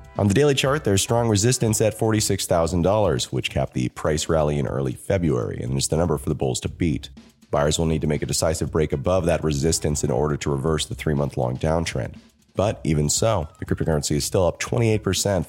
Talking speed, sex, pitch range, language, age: 205 wpm, male, 80-105 Hz, English, 30-49